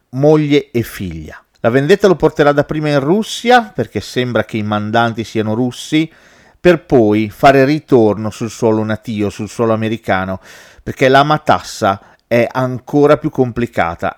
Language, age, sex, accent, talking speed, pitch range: Italian, 40-59, male, native, 145 wpm, 110-155 Hz